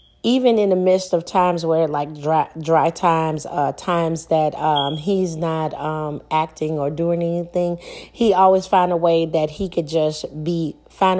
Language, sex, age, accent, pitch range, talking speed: English, female, 30-49, American, 155-185 Hz, 175 wpm